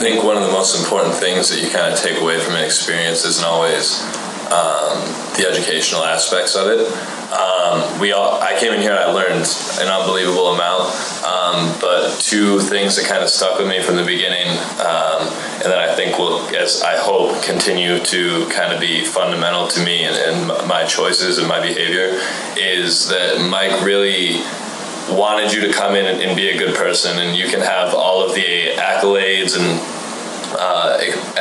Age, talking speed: 20-39, 185 wpm